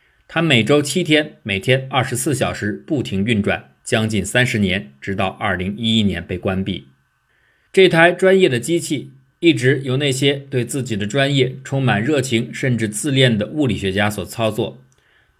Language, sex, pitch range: Chinese, male, 100-135 Hz